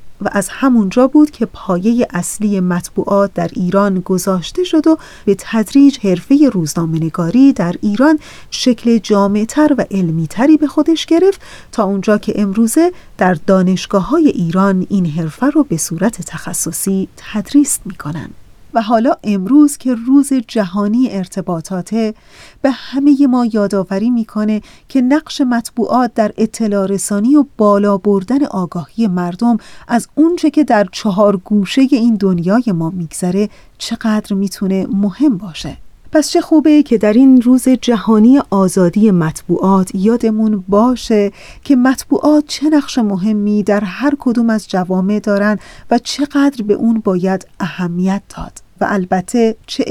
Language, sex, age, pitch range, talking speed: Persian, female, 40-59, 195-250 Hz, 135 wpm